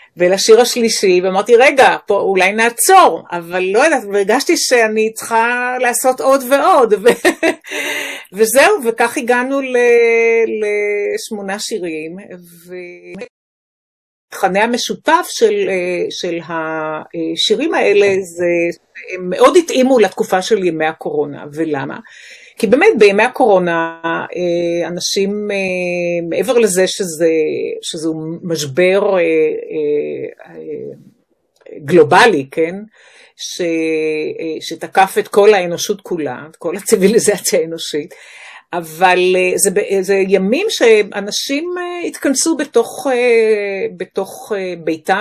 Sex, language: female, Hebrew